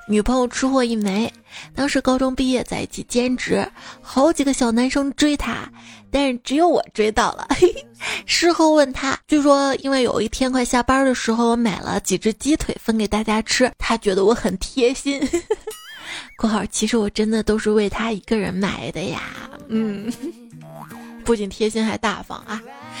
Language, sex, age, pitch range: Chinese, female, 20-39, 215-265 Hz